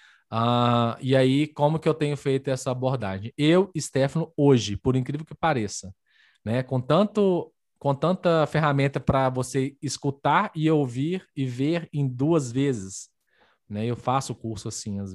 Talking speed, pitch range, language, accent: 150 wpm, 115-155 Hz, Portuguese, Brazilian